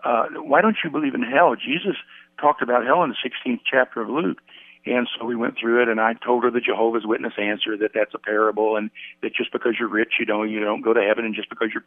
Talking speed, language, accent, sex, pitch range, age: 265 wpm, English, American, male, 110-150 Hz, 60-79